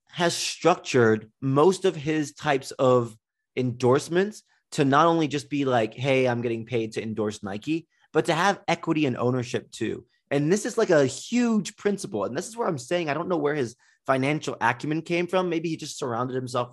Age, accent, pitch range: 20-39, American, 105-150 Hz